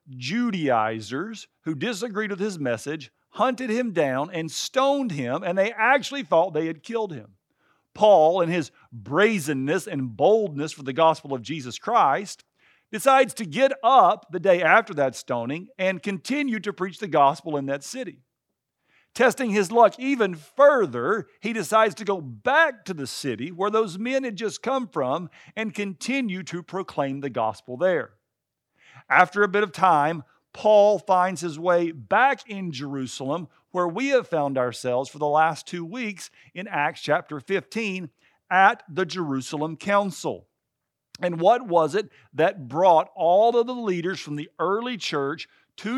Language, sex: English, male